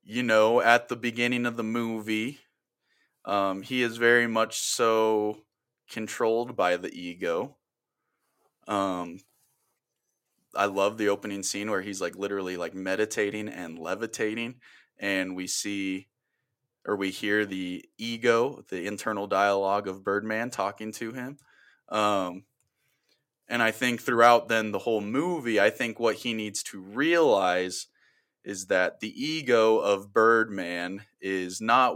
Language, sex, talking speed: English, male, 135 wpm